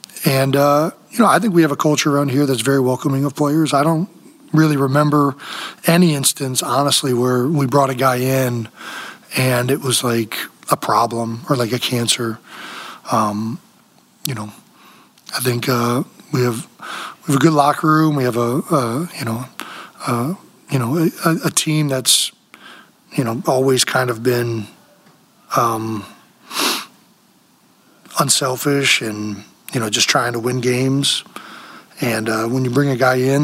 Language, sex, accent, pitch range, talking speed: English, male, American, 120-145 Hz, 165 wpm